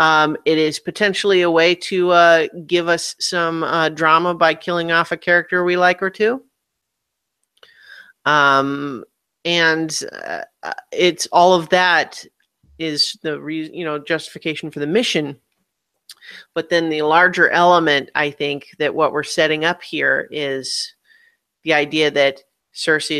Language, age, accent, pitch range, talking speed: English, 40-59, American, 145-180 Hz, 145 wpm